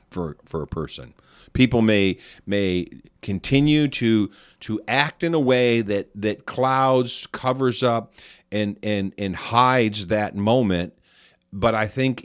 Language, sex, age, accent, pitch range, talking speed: English, male, 50-69, American, 95-110 Hz, 135 wpm